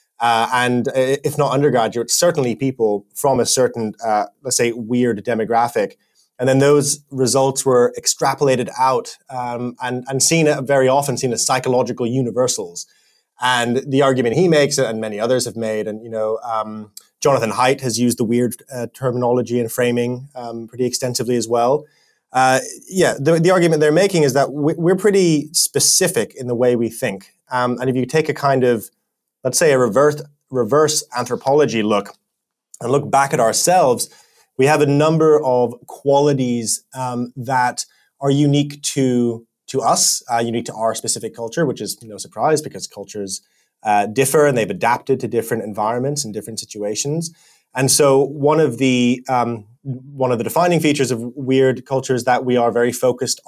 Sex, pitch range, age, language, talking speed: male, 120-140 Hz, 20-39, English, 175 wpm